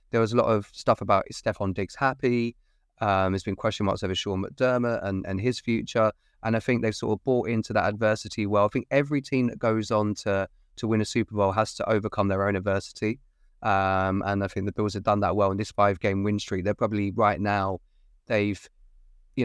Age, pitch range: 20-39, 100-110 Hz